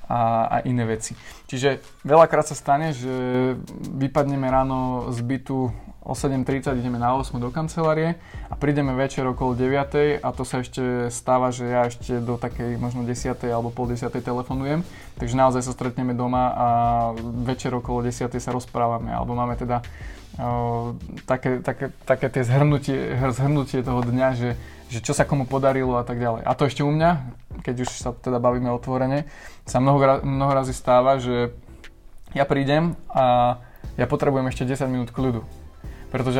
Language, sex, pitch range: Slovak, male, 125-135 Hz